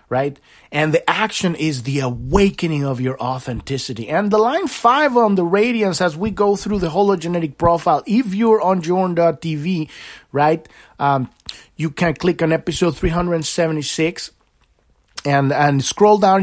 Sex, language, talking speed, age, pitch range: male, English, 145 wpm, 30-49, 145-195 Hz